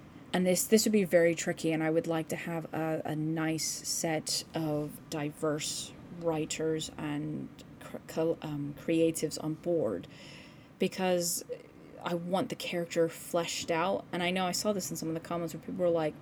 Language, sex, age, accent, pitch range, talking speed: English, female, 30-49, American, 160-185 Hz, 180 wpm